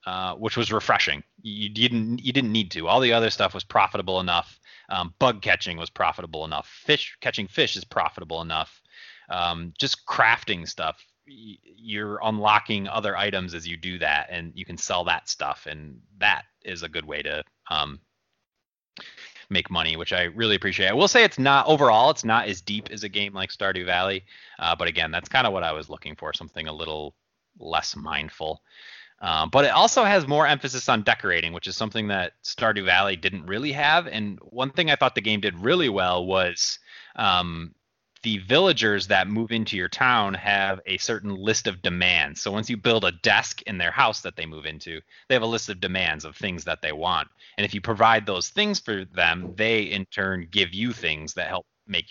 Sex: male